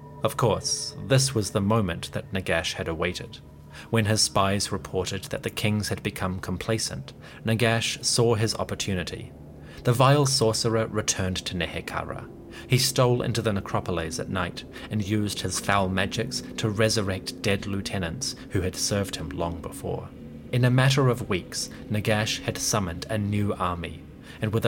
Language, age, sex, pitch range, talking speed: English, 30-49, male, 90-120 Hz, 160 wpm